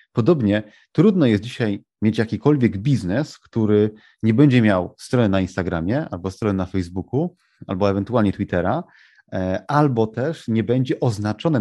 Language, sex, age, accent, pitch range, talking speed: Polish, male, 30-49, native, 100-125 Hz, 135 wpm